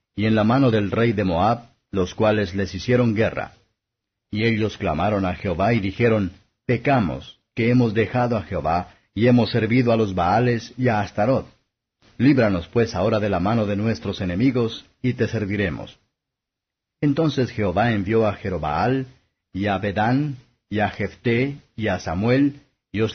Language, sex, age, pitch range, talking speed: Spanish, male, 50-69, 100-125 Hz, 165 wpm